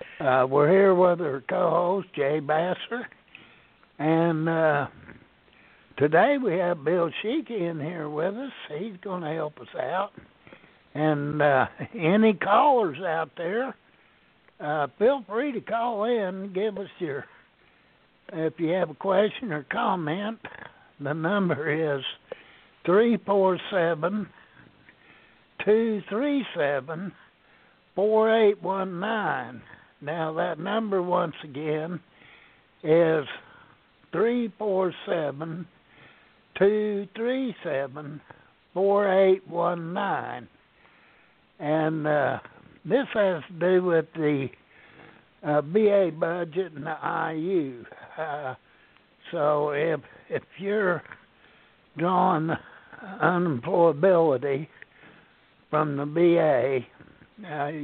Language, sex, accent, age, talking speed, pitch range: English, male, American, 60-79, 110 wpm, 155-200 Hz